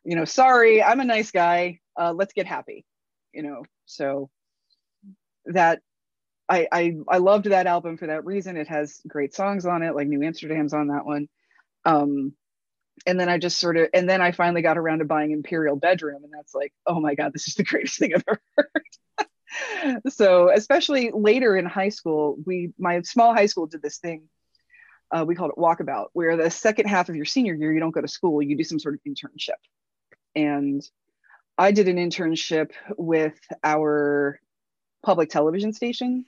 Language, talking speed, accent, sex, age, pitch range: English, 190 wpm, American, female, 30-49, 150-195 Hz